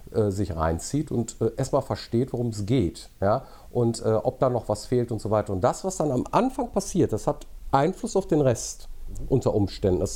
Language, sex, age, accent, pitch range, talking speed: German, male, 50-69, German, 115-175 Hz, 205 wpm